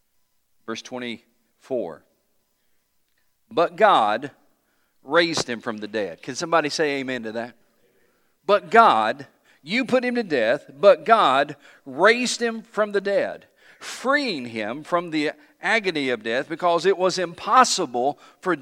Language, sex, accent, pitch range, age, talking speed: English, male, American, 145-200 Hz, 50-69, 130 wpm